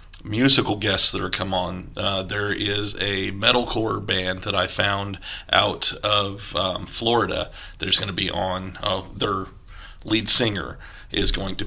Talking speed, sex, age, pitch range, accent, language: 165 wpm, male, 30-49, 95-110 Hz, American, English